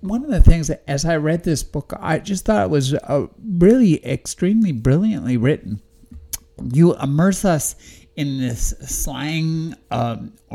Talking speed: 155 wpm